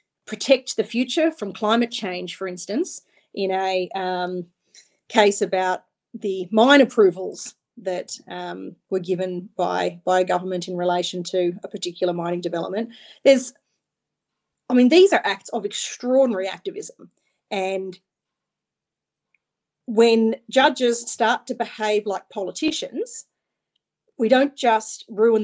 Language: English